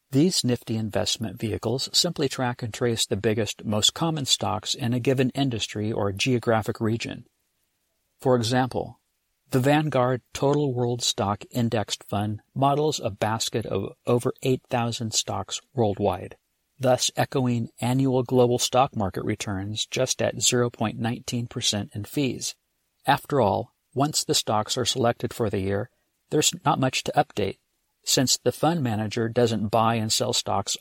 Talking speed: 140 wpm